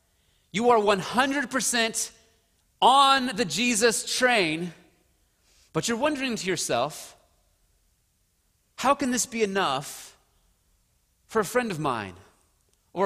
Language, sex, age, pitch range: English, male, 30-49, 205-270 Hz